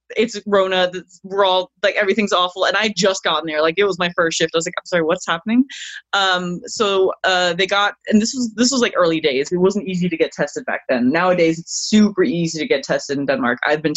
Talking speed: 250 wpm